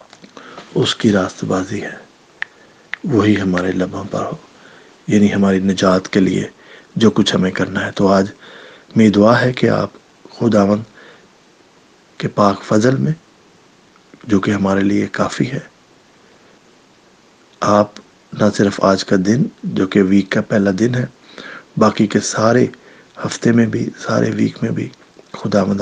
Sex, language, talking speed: male, English, 140 wpm